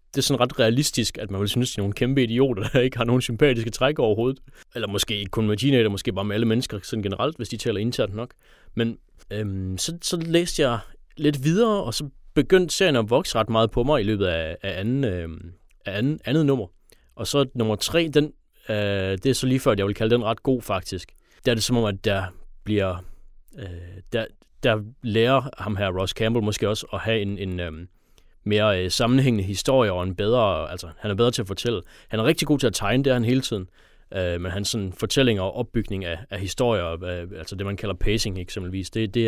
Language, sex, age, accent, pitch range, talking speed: Danish, male, 30-49, native, 95-125 Hz, 230 wpm